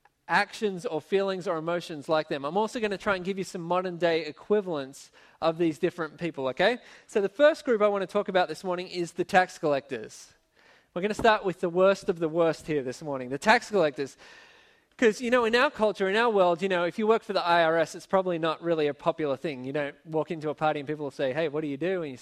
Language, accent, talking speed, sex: English, Australian, 255 wpm, male